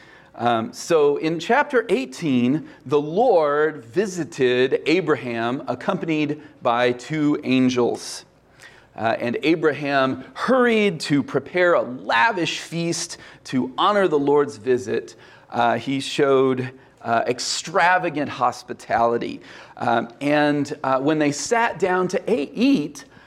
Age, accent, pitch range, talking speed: 40-59, American, 125-170 Hz, 110 wpm